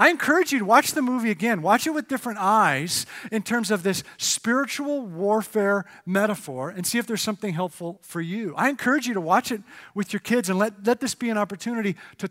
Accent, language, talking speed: American, English, 220 wpm